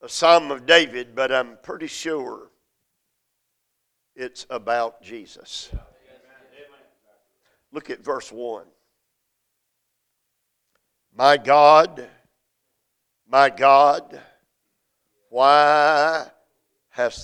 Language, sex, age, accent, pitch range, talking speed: English, male, 50-69, American, 135-170 Hz, 75 wpm